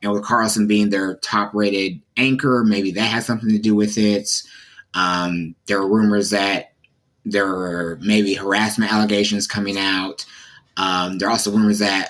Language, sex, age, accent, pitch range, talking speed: English, male, 20-39, American, 95-110 Hz, 165 wpm